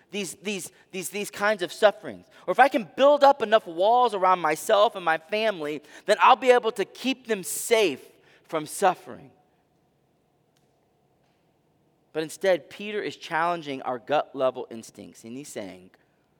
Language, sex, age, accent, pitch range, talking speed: English, male, 30-49, American, 130-185 Hz, 155 wpm